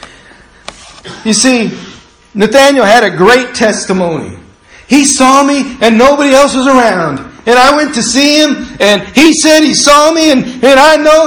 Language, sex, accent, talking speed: English, male, American, 165 wpm